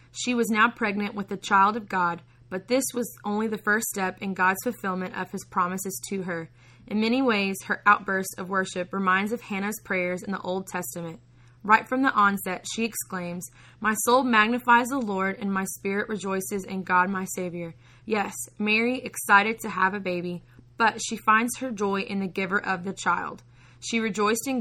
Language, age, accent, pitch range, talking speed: English, 20-39, American, 185-215 Hz, 195 wpm